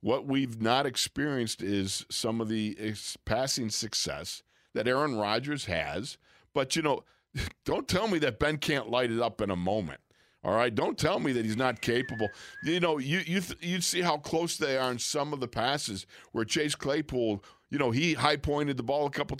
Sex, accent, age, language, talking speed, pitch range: male, American, 50-69, English, 200 wpm, 105-145 Hz